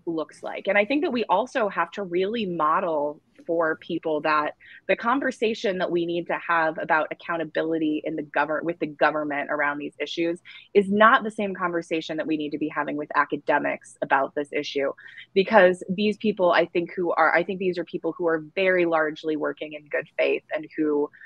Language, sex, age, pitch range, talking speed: English, female, 20-39, 160-200 Hz, 200 wpm